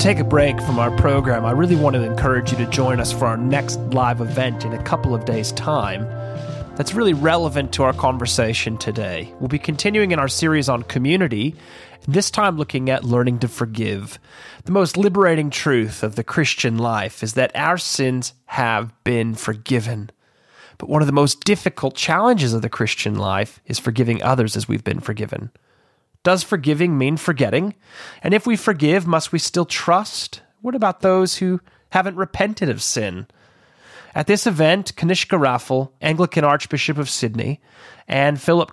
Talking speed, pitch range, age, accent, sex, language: 175 wpm, 115-160 Hz, 30-49, American, male, English